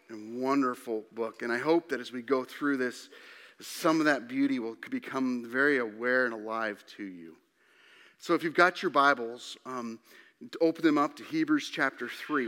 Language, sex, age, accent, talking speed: English, male, 40-59, American, 185 wpm